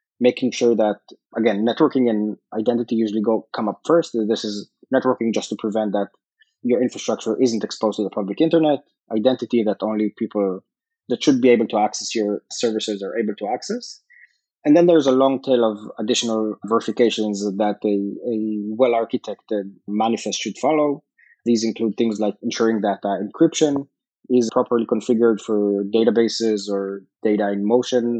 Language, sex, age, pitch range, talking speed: English, male, 20-39, 110-130 Hz, 160 wpm